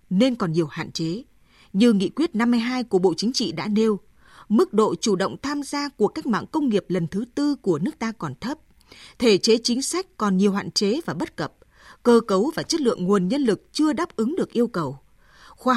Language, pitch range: Vietnamese, 190-250 Hz